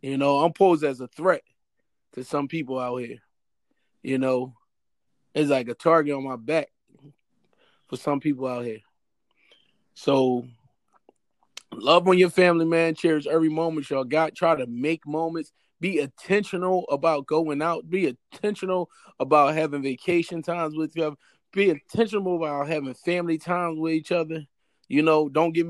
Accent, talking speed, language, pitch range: American, 160 wpm, English, 140-175 Hz